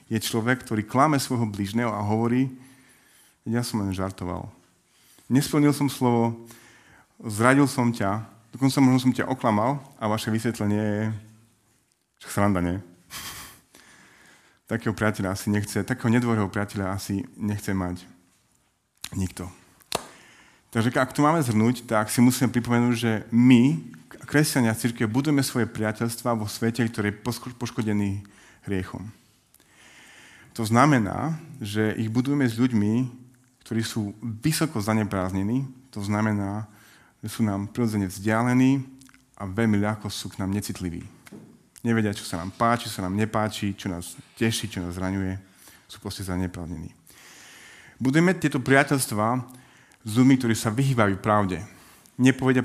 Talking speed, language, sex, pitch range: 130 wpm, Slovak, male, 100-125 Hz